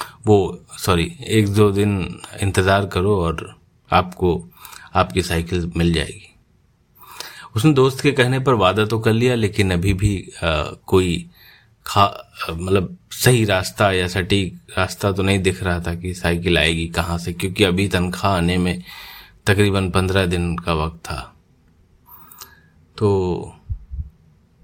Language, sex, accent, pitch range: Hindi, male, native, 85-100 Hz